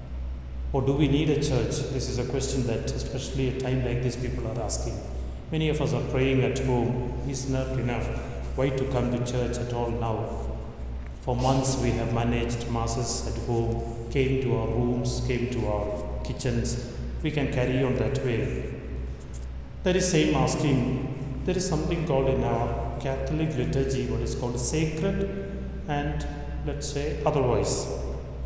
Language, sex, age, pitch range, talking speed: English, male, 30-49, 115-150 Hz, 170 wpm